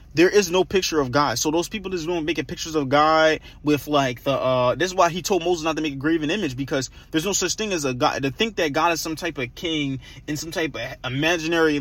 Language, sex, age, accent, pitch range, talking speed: English, male, 20-39, American, 140-175 Hz, 270 wpm